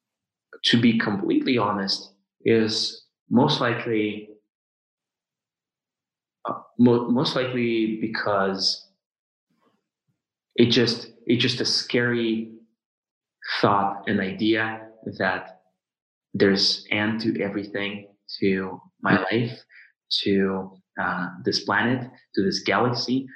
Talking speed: 95 wpm